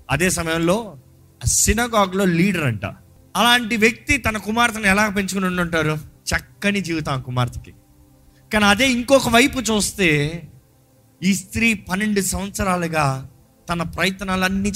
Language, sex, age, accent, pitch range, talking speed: Telugu, male, 30-49, native, 125-190 Hz, 110 wpm